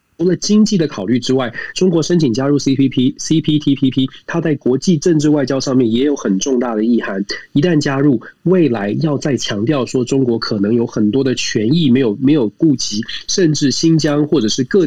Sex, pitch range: male, 120-155 Hz